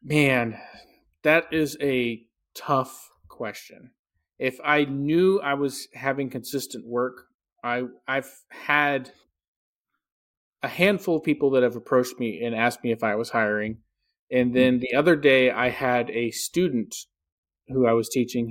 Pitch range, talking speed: 120-145 Hz, 150 wpm